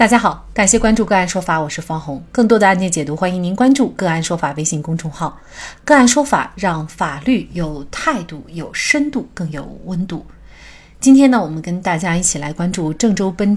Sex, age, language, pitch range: female, 30-49, Chinese, 170-235 Hz